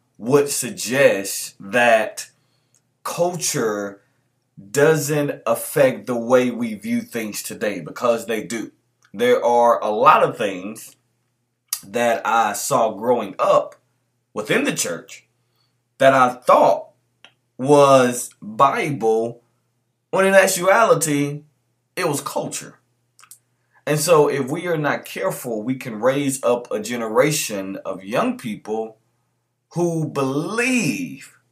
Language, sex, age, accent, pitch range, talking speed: English, male, 20-39, American, 120-145 Hz, 110 wpm